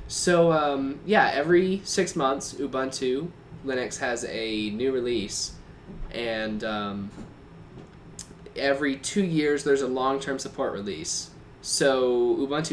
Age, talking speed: 10-29, 115 wpm